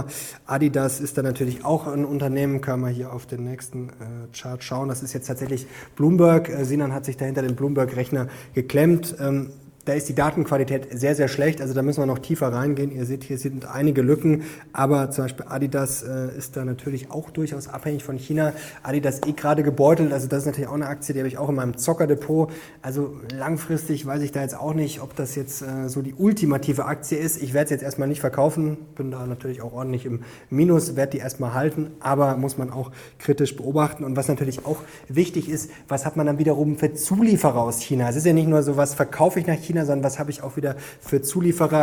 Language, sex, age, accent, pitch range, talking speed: German, male, 20-39, German, 130-150 Hz, 220 wpm